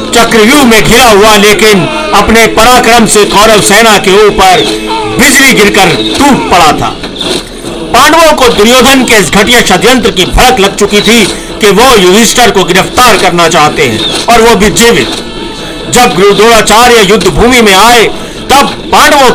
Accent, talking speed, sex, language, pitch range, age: native, 145 wpm, male, Hindi, 195-240 Hz, 50-69